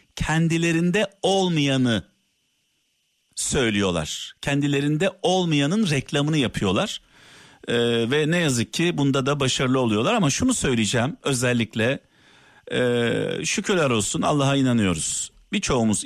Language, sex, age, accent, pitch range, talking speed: Turkish, male, 50-69, native, 120-180 Hz, 95 wpm